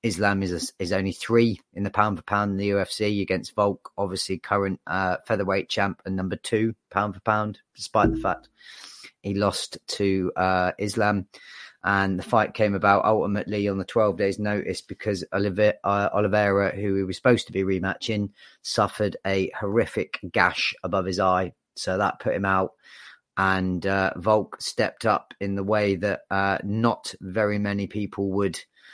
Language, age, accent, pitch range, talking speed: English, 30-49, British, 95-105 Hz, 170 wpm